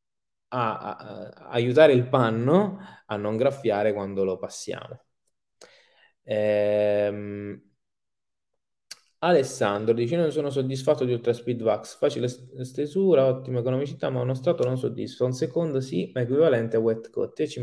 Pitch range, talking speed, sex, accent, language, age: 115-145 Hz, 140 wpm, male, native, Italian, 20-39